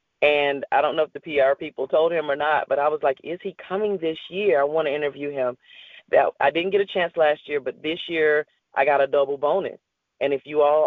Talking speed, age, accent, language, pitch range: 250 wpm, 40-59, American, English, 135-185 Hz